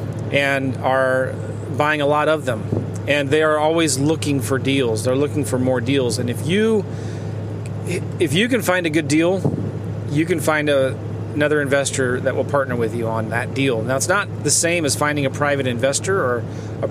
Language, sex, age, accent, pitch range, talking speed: English, male, 30-49, American, 115-165 Hz, 195 wpm